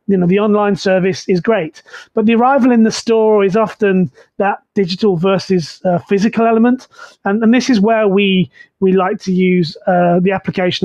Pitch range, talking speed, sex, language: 185-220 Hz, 190 wpm, male, English